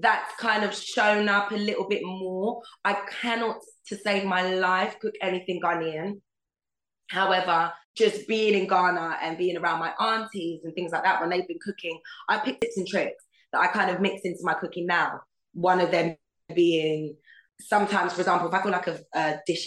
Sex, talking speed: female, 195 wpm